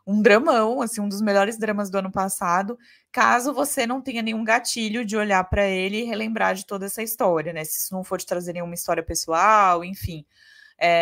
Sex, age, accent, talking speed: female, 20-39, Brazilian, 205 wpm